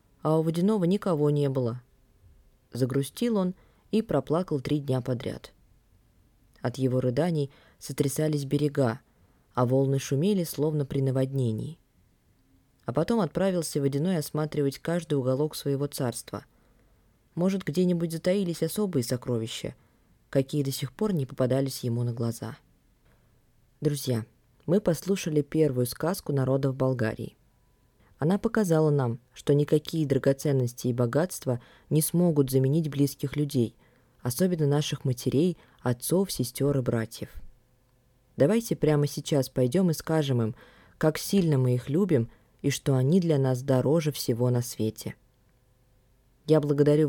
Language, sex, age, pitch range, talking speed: Russian, female, 20-39, 125-155 Hz, 125 wpm